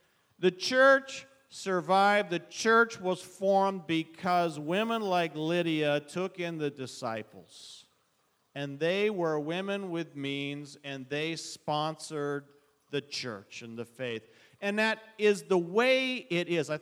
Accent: American